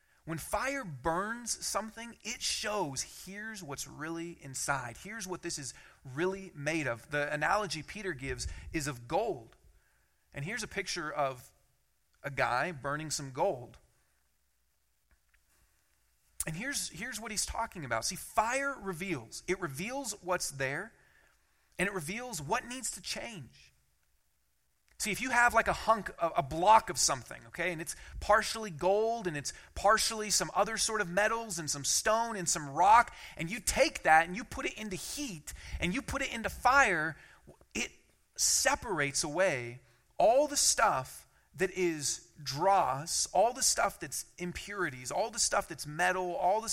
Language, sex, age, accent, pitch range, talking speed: English, male, 40-59, American, 145-210 Hz, 155 wpm